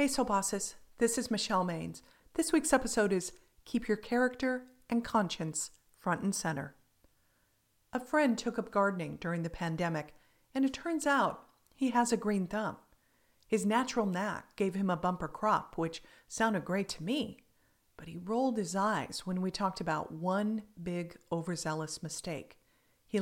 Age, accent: 50-69, American